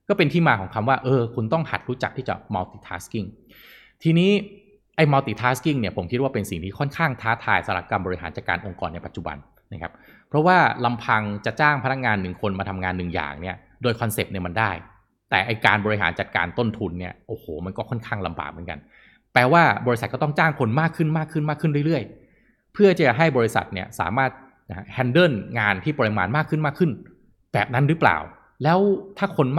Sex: male